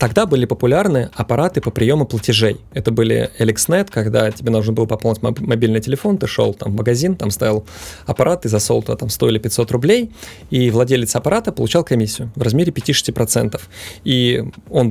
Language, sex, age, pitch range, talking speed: Russian, male, 20-39, 115-140 Hz, 160 wpm